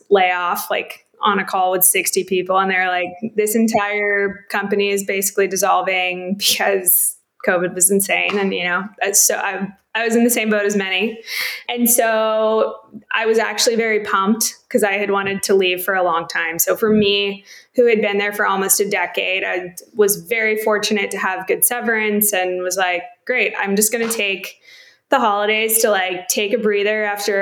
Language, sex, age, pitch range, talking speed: English, female, 20-39, 190-220 Hz, 190 wpm